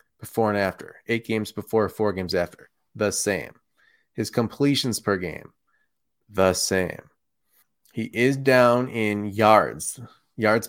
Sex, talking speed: male, 130 wpm